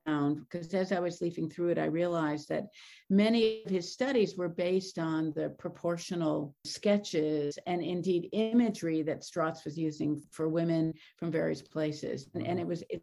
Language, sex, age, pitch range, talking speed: English, female, 50-69, 160-195 Hz, 165 wpm